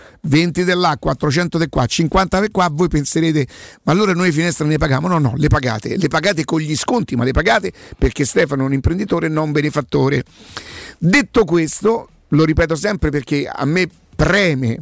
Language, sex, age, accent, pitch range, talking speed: Italian, male, 50-69, native, 140-185 Hz, 185 wpm